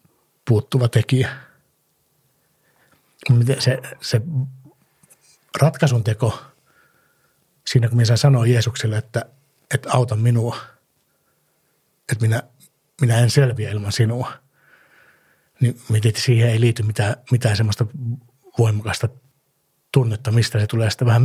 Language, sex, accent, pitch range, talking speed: Finnish, male, native, 115-130 Hz, 105 wpm